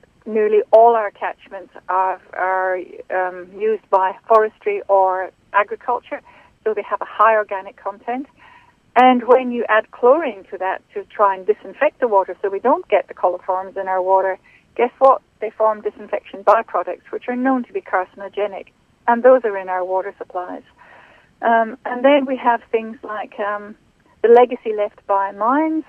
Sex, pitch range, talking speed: female, 195-245 Hz, 170 wpm